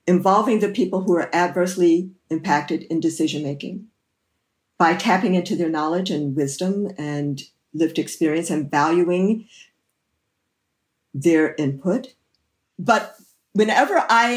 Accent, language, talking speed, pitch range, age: American, English, 110 wpm, 180-255 Hz, 50-69